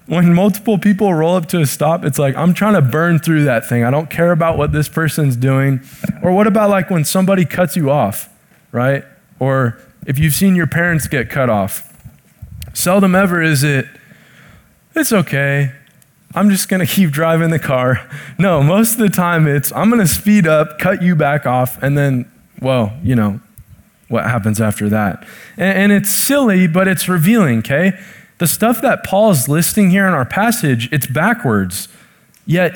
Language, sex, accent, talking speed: English, male, American, 190 wpm